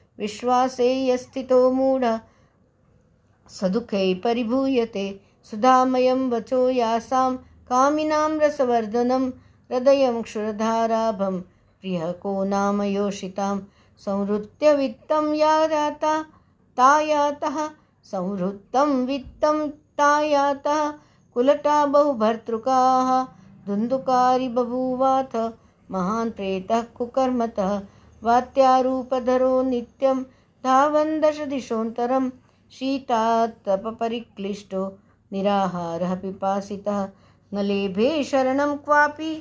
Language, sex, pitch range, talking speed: Hindi, female, 205-265 Hz, 45 wpm